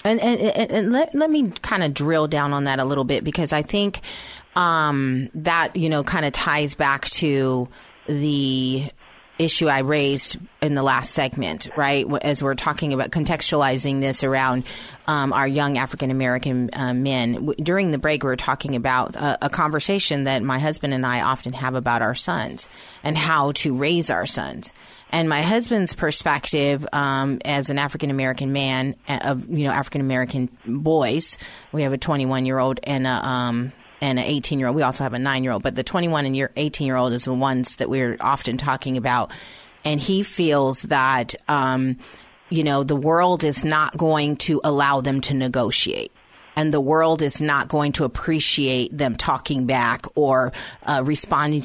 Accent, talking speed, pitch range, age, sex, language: American, 185 wpm, 130-155 Hz, 30-49, female, English